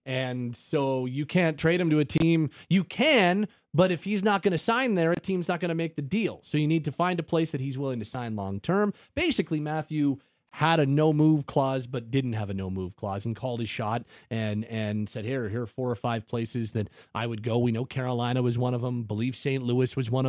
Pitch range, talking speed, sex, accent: 120-160 Hz, 245 wpm, male, American